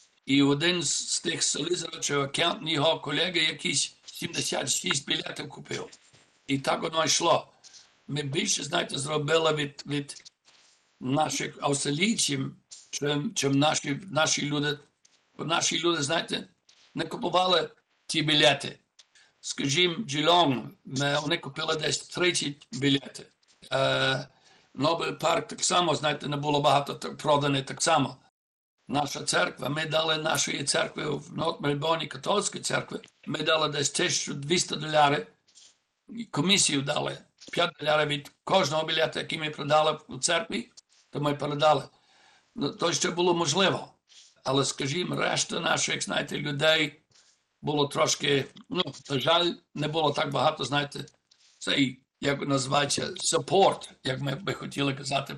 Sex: male